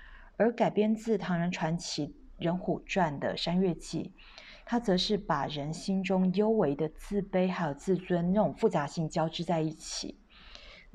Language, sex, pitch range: Chinese, female, 155-200 Hz